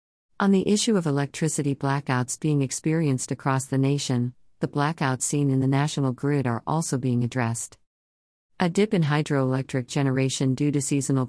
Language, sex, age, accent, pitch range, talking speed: English, female, 50-69, American, 130-150 Hz, 160 wpm